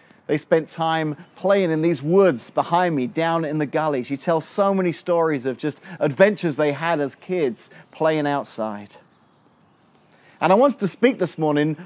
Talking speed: 170 wpm